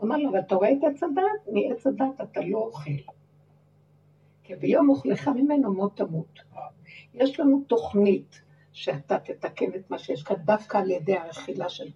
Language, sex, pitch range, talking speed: Hebrew, female, 180-260 Hz, 165 wpm